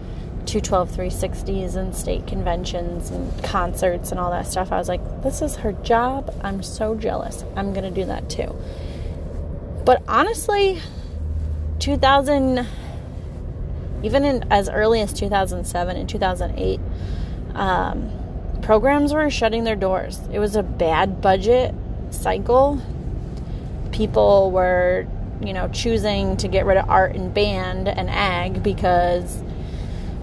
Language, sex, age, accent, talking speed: English, female, 20-39, American, 130 wpm